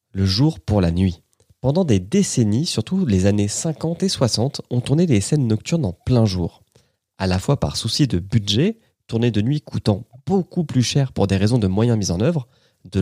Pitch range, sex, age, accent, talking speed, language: 100-140 Hz, male, 30-49, French, 205 wpm, French